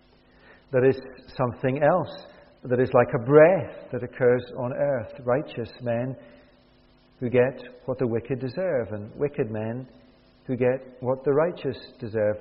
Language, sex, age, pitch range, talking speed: English, male, 50-69, 115-135 Hz, 145 wpm